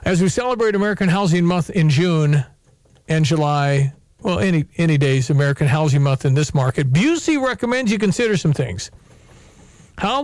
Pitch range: 155-205 Hz